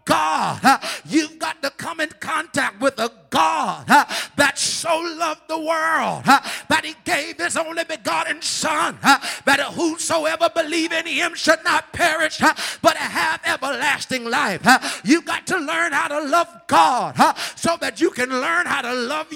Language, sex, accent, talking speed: English, male, American, 155 wpm